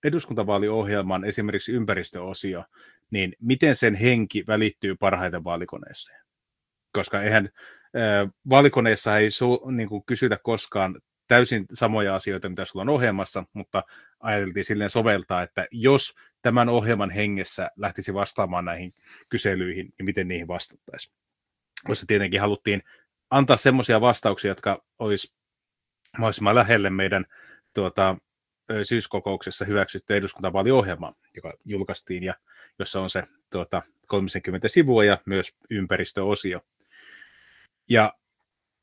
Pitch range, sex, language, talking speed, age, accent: 95-115 Hz, male, Finnish, 105 wpm, 30-49, native